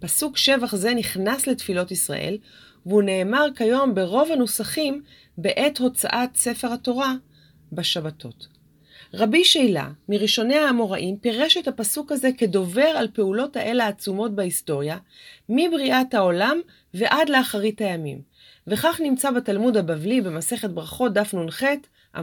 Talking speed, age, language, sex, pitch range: 115 wpm, 30-49, Hebrew, female, 180-250 Hz